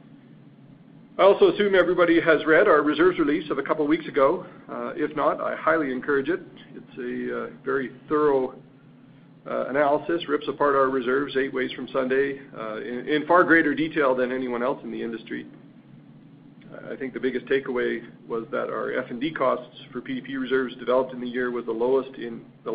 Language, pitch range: English, 125-150 Hz